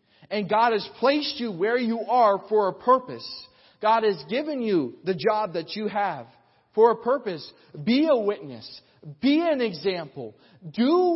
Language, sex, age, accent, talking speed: English, male, 40-59, American, 160 wpm